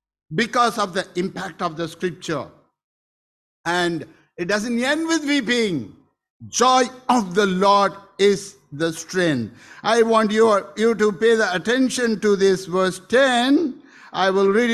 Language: English